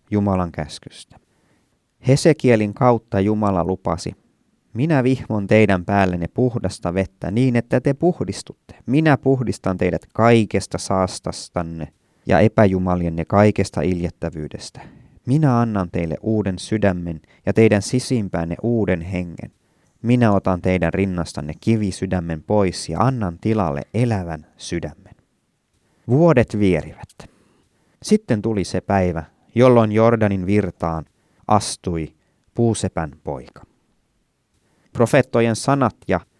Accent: native